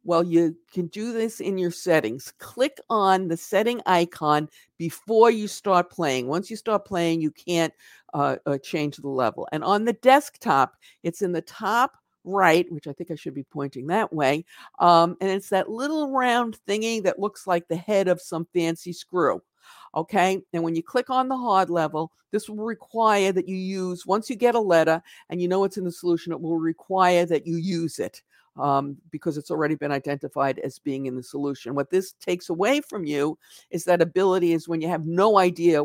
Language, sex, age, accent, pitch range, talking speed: English, female, 50-69, American, 155-195 Hz, 205 wpm